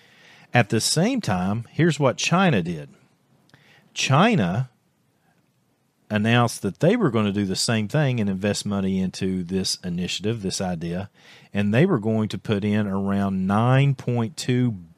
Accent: American